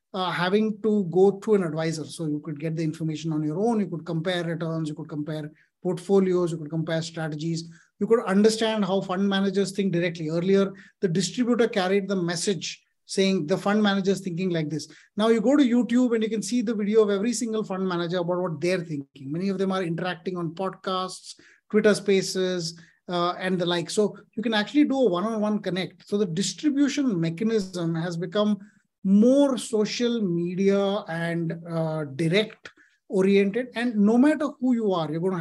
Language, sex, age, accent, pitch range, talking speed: English, male, 30-49, Indian, 175-215 Hz, 190 wpm